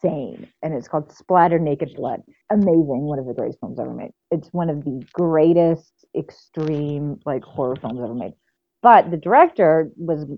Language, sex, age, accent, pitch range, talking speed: English, female, 30-49, American, 150-185 Hz, 170 wpm